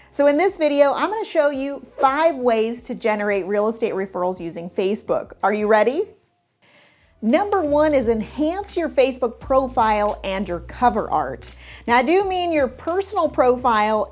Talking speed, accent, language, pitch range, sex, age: 160 wpm, American, English, 205-275 Hz, female, 40-59